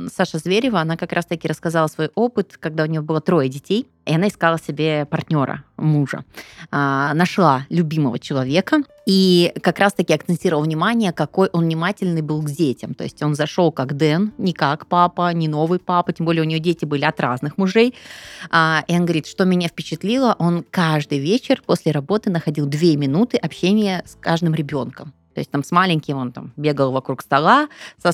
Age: 20-39